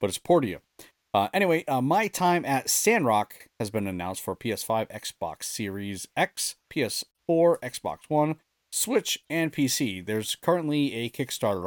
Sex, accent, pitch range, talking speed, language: male, American, 105-130 Hz, 145 wpm, English